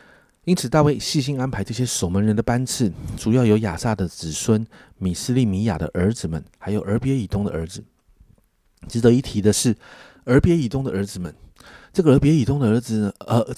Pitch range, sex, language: 95-125 Hz, male, Chinese